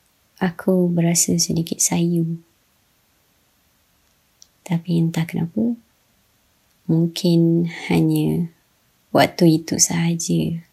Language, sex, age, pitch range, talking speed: Malay, male, 20-39, 165-190 Hz, 65 wpm